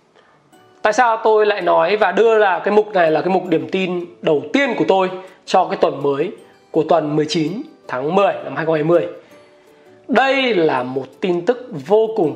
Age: 20-39